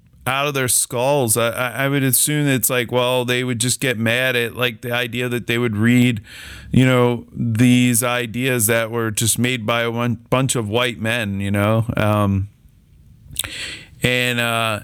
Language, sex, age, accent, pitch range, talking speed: English, male, 40-59, American, 110-130 Hz, 175 wpm